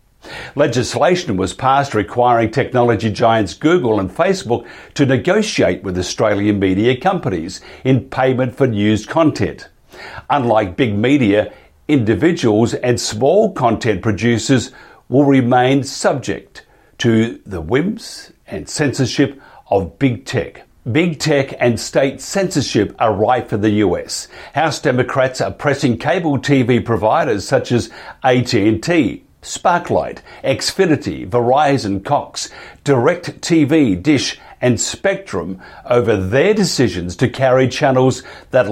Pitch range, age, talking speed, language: 115-145 Hz, 50-69, 115 wpm, English